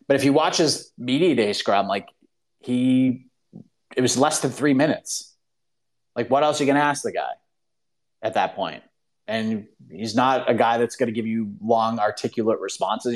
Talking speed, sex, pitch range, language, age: 190 wpm, male, 110-140 Hz, English, 30-49